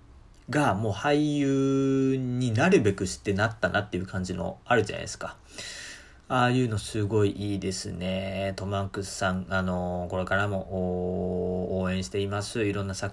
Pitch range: 95-125 Hz